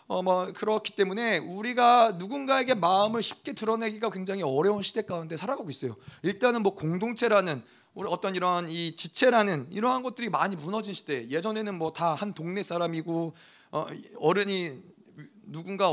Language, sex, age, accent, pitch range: Korean, male, 30-49, native, 155-220 Hz